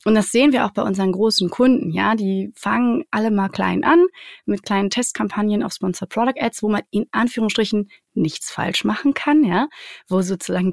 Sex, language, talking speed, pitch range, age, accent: female, German, 180 wpm, 180-220 Hz, 20-39, German